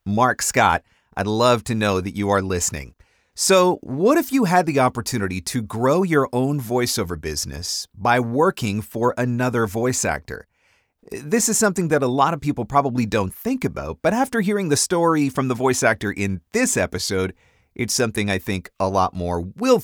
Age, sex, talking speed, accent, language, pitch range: 40-59, male, 185 wpm, American, English, 110-155 Hz